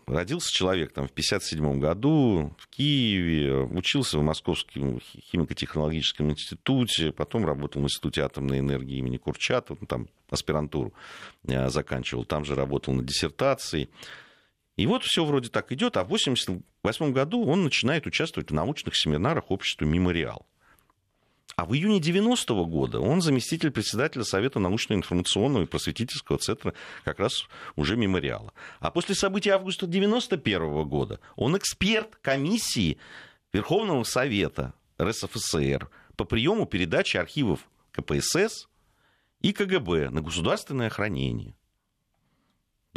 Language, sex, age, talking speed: Russian, male, 40-59, 120 wpm